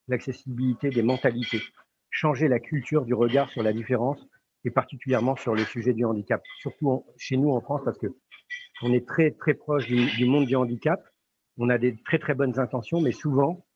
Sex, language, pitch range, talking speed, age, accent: male, French, 120-140 Hz, 195 wpm, 50-69, French